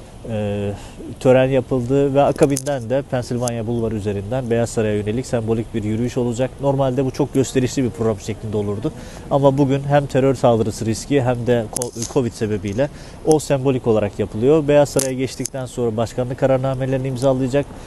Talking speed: 150 wpm